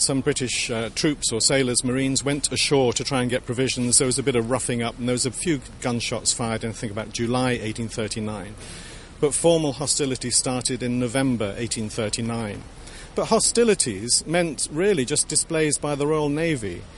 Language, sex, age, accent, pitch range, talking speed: English, male, 40-59, British, 120-155 Hz, 175 wpm